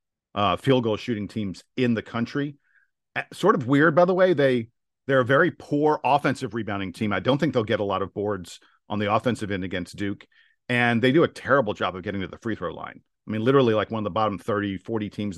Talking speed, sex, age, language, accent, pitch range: 240 wpm, male, 50-69, English, American, 105-130 Hz